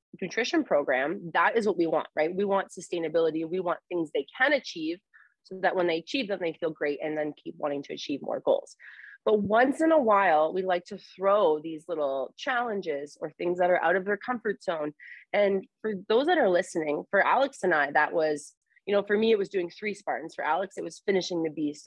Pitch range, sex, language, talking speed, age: 165-215 Hz, female, English, 230 wpm, 30-49